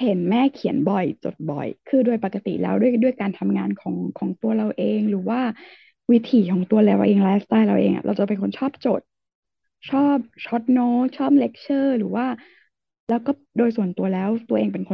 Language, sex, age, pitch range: Thai, female, 20-39, 210-275 Hz